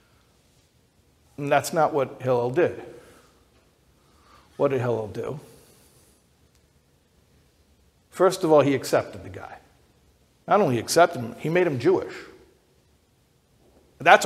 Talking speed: 110 wpm